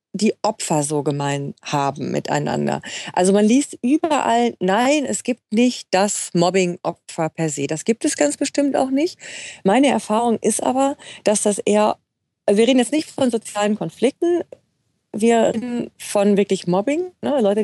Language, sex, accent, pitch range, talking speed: German, female, German, 195-240 Hz, 155 wpm